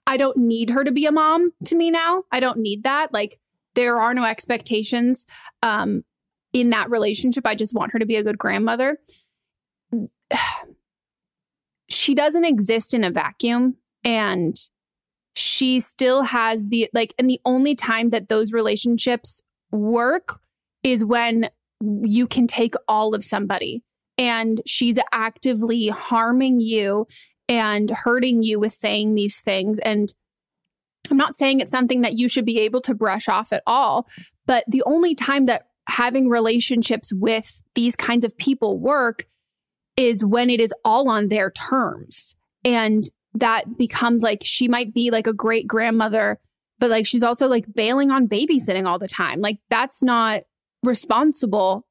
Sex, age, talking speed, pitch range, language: female, 20-39, 155 wpm, 220-255 Hz, English